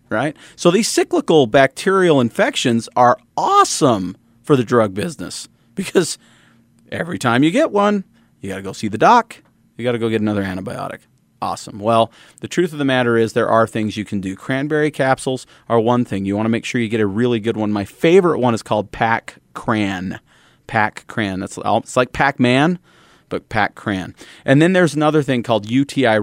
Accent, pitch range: American, 105-135 Hz